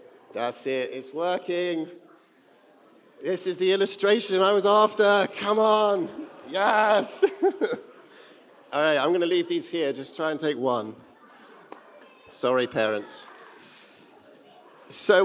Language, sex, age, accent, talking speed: English, male, 50-69, British, 115 wpm